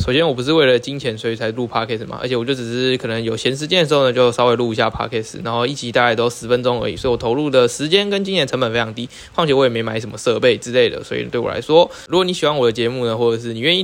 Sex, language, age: male, Chinese, 20-39